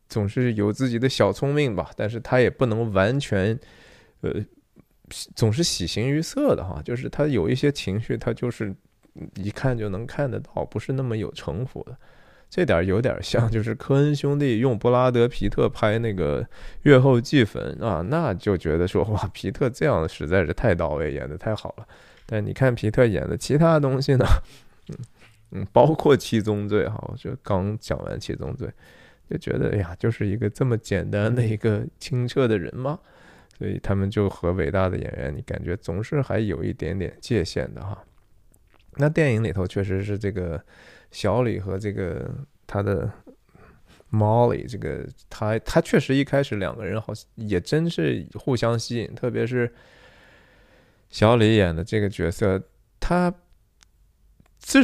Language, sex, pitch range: Chinese, male, 100-130 Hz